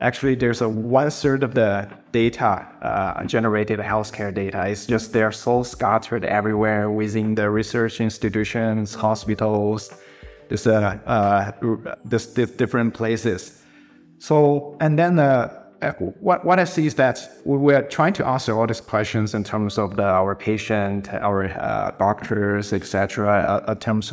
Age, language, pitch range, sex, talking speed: 30-49, English, 105-120 Hz, male, 150 wpm